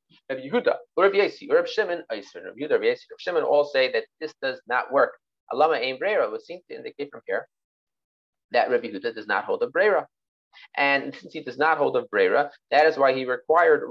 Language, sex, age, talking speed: English, male, 30-49, 205 wpm